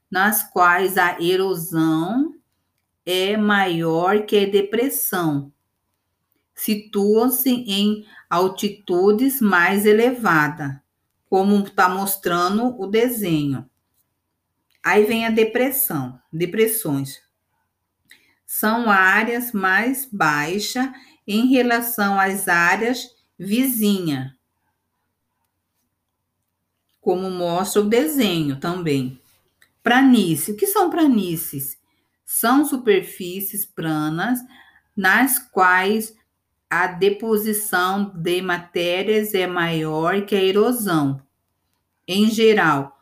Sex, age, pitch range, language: female, 50-69, 155-225 Hz, Portuguese